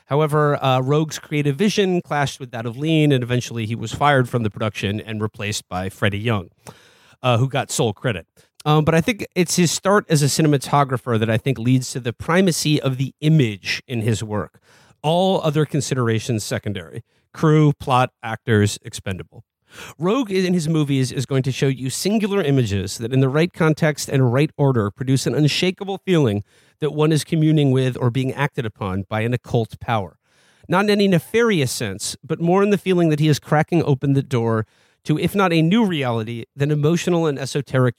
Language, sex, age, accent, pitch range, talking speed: English, male, 40-59, American, 115-155 Hz, 195 wpm